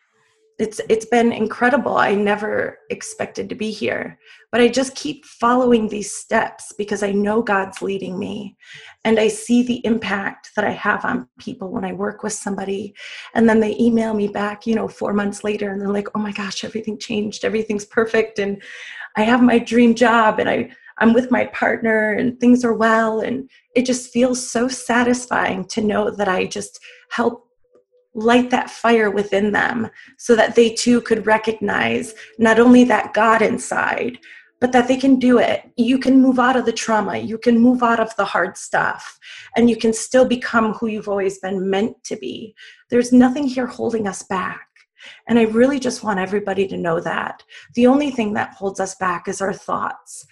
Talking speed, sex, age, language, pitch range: 190 wpm, female, 30-49, English, 210-250 Hz